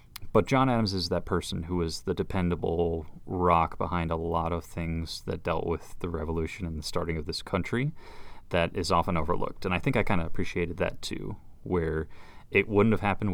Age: 30-49